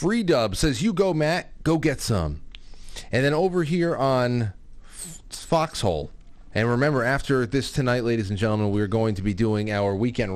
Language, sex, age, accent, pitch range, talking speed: English, male, 30-49, American, 100-135 Hz, 175 wpm